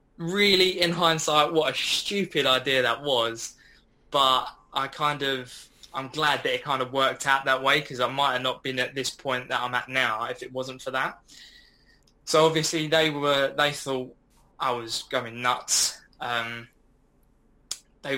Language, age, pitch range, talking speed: English, 10-29, 125-145 Hz, 175 wpm